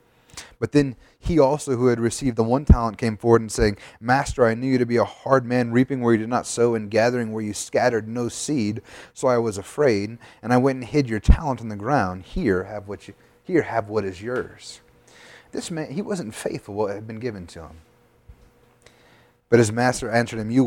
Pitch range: 110-130 Hz